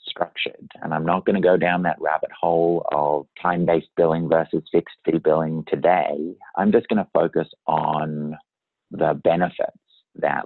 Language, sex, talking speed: English, male, 160 wpm